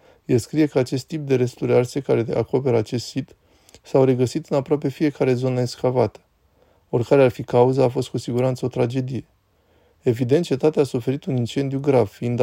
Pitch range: 120-140 Hz